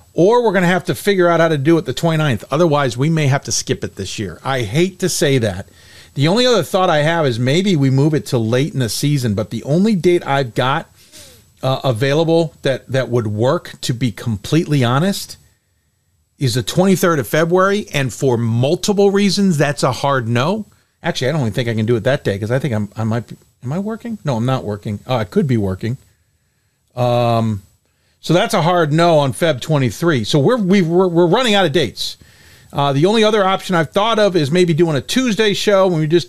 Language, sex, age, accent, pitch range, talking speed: English, male, 40-59, American, 110-170 Hz, 225 wpm